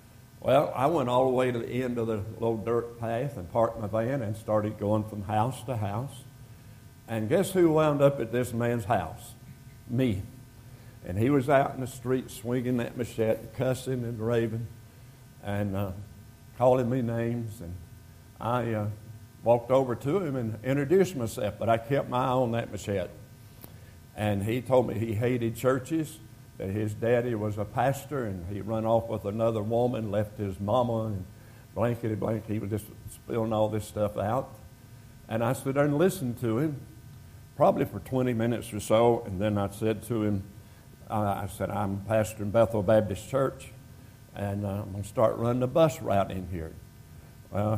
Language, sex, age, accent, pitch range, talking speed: English, male, 60-79, American, 105-125 Hz, 185 wpm